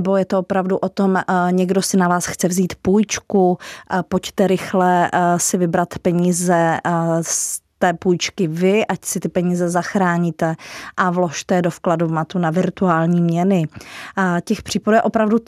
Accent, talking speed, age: native, 160 wpm, 30-49